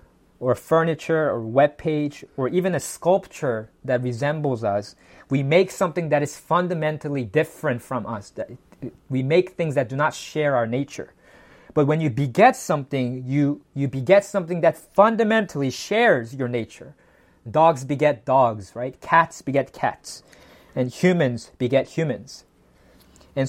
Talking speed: 140 wpm